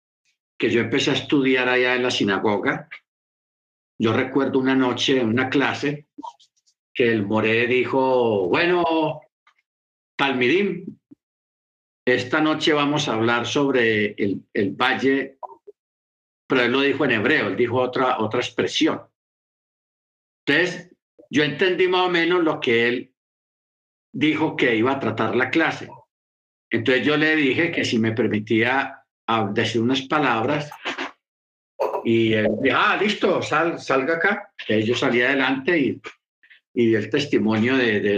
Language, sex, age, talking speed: Spanish, male, 50-69, 135 wpm